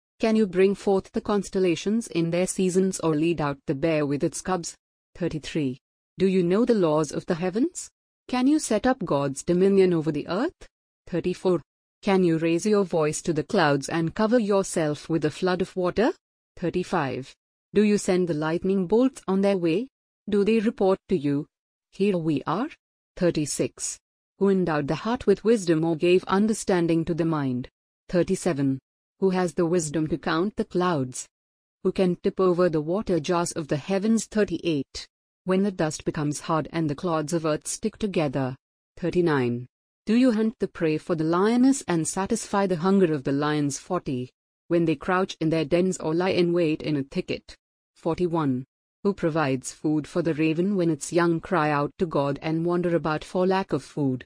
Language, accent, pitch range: English, Indian, 155-195 Hz